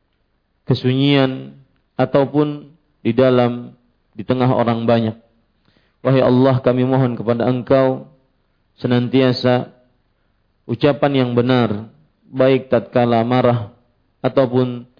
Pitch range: 115-135 Hz